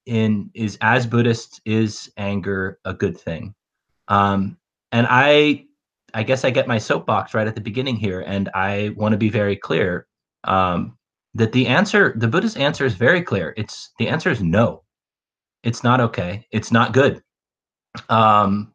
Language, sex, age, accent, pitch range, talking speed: English, male, 30-49, American, 100-120 Hz, 165 wpm